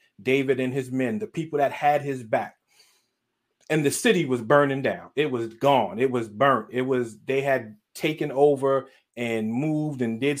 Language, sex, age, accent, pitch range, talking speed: English, male, 40-59, American, 135-195 Hz, 185 wpm